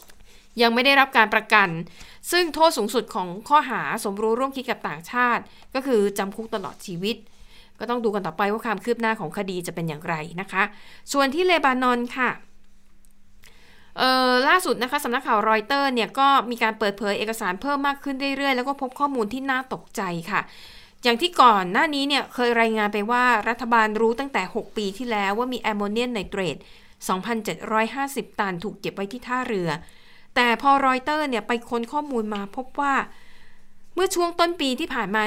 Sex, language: female, Thai